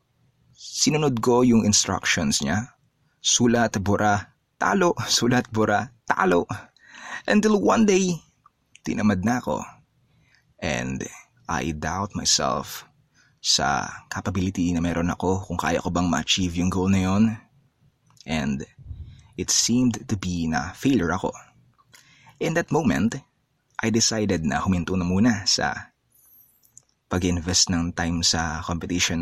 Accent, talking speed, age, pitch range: native, 120 wpm, 20-39, 90-120 Hz